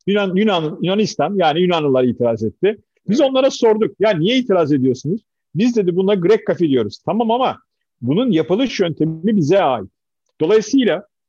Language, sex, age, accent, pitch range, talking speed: Turkish, male, 50-69, native, 145-200 Hz, 150 wpm